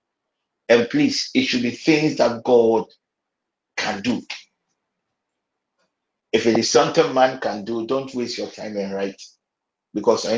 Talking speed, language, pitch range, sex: 145 wpm, English, 105-130 Hz, male